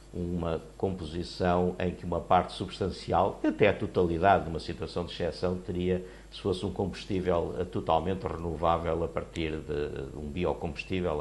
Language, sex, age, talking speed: Portuguese, male, 50-69, 145 wpm